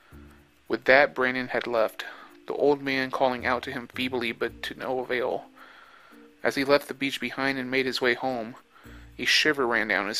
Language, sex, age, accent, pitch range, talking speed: English, male, 30-49, American, 125-145 Hz, 195 wpm